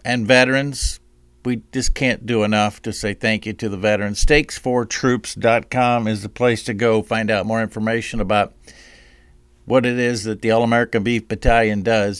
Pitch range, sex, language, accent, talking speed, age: 100-125 Hz, male, English, American, 175 wpm, 50-69